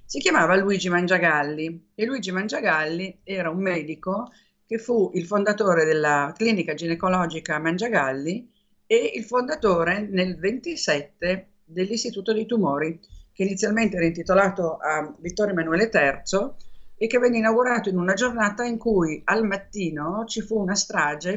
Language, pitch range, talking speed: Italian, 165-210 Hz, 140 wpm